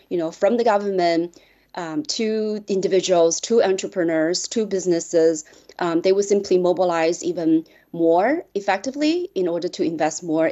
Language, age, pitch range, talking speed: English, 30-49, 170-205 Hz, 145 wpm